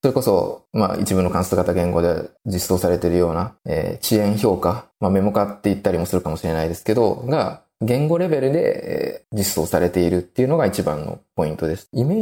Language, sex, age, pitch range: Japanese, male, 20-39, 90-110 Hz